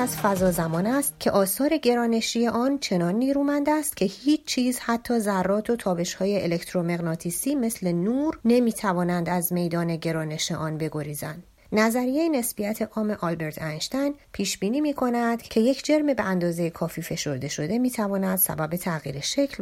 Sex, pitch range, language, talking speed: female, 175-240 Hz, Persian, 145 wpm